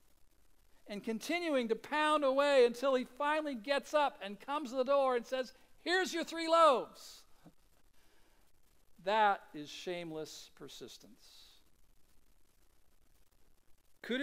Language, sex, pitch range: English, male, 180-290 Hz